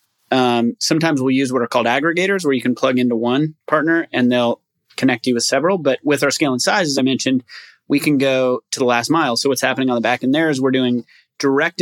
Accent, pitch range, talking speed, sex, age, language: American, 120-140 Hz, 255 wpm, male, 30-49, English